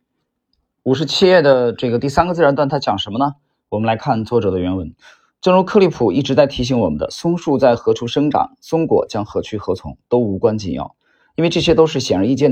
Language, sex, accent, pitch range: Chinese, male, native, 110-150 Hz